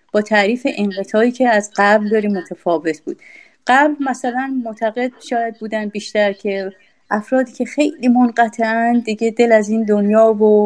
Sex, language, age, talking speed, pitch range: female, Persian, 30-49, 145 wpm, 200-250 Hz